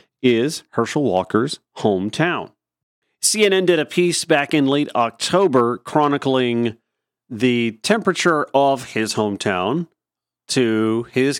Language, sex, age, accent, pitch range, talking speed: English, male, 40-59, American, 125-180 Hz, 105 wpm